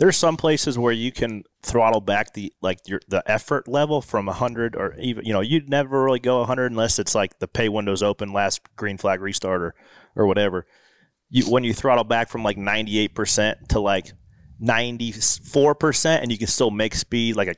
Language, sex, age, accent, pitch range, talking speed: English, male, 30-49, American, 95-115 Hz, 200 wpm